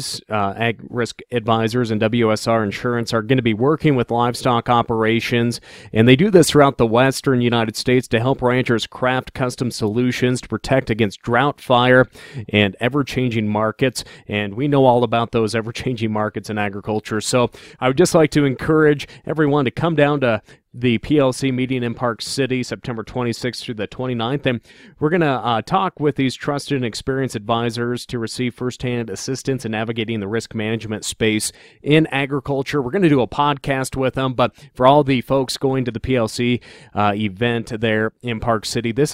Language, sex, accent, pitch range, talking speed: English, male, American, 110-135 Hz, 185 wpm